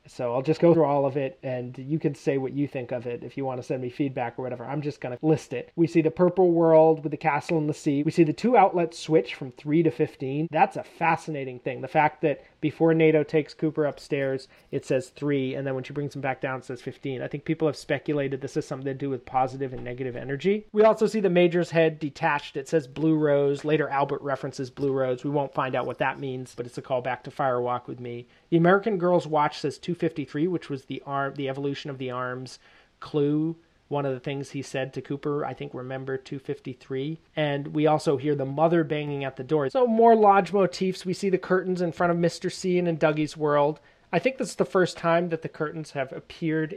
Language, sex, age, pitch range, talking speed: English, male, 30-49, 135-160 Hz, 250 wpm